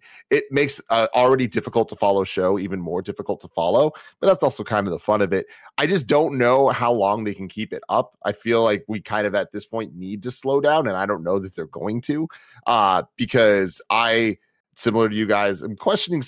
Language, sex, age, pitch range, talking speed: English, male, 30-49, 100-130 Hz, 235 wpm